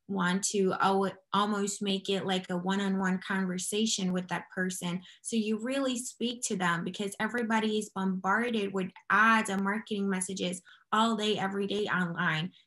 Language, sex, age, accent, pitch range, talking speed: English, female, 20-39, American, 185-210 Hz, 155 wpm